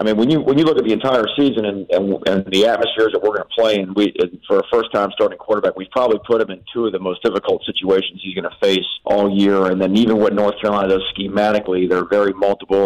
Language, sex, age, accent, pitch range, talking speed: English, male, 40-59, American, 95-110 Hz, 270 wpm